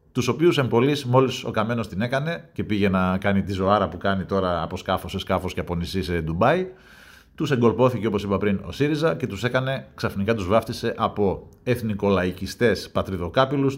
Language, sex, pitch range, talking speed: Greek, male, 95-125 Hz, 185 wpm